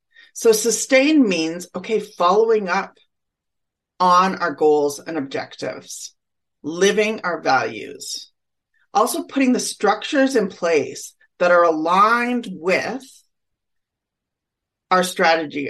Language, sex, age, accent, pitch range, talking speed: English, female, 40-59, American, 165-230 Hz, 100 wpm